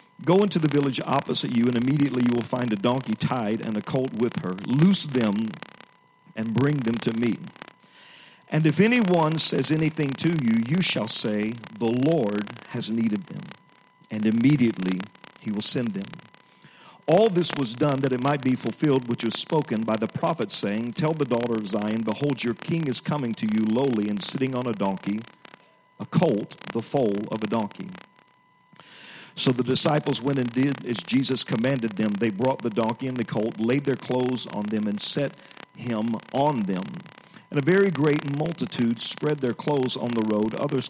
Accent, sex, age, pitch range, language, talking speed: American, male, 50-69, 110-150 Hz, English, 185 wpm